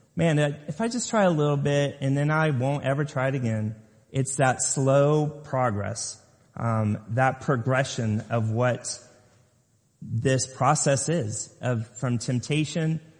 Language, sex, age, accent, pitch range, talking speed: English, male, 30-49, American, 120-150 Hz, 140 wpm